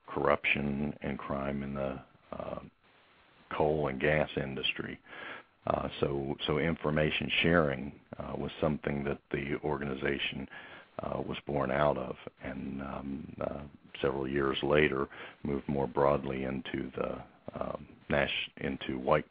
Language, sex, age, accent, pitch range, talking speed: English, male, 50-69, American, 70-75 Hz, 125 wpm